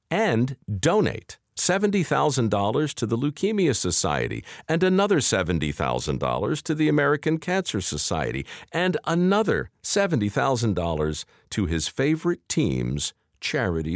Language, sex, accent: English, male, American